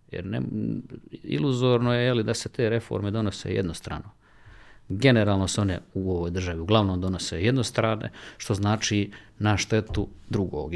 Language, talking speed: Croatian, 135 wpm